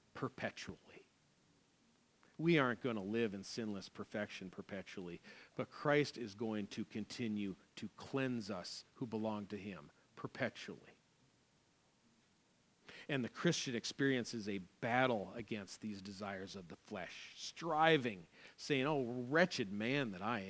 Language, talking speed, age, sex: English, 125 wpm, 40-59, male